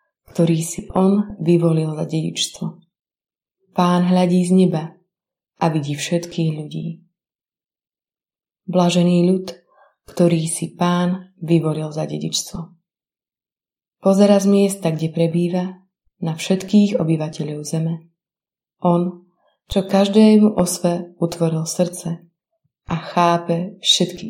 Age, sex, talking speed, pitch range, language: 30-49, female, 100 wpm, 165-185 Hz, Slovak